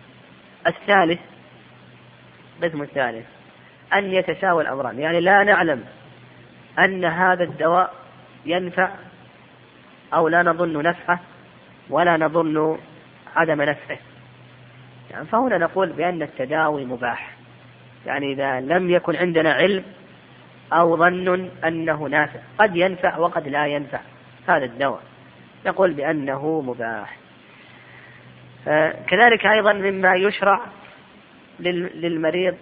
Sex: female